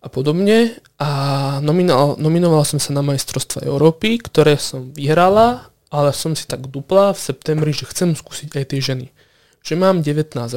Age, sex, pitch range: 20-39, male, 140-165 Hz